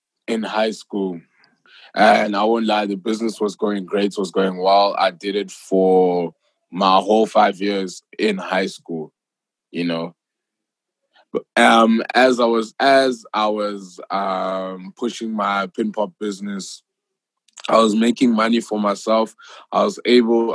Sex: male